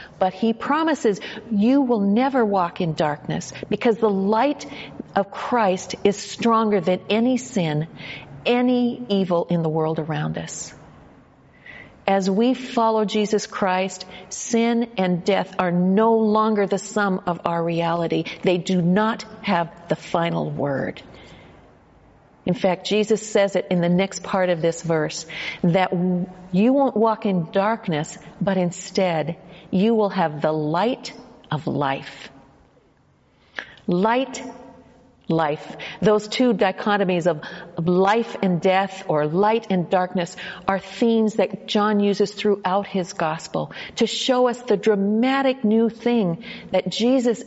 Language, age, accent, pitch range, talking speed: English, 50-69, American, 175-220 Hz, 135 wpm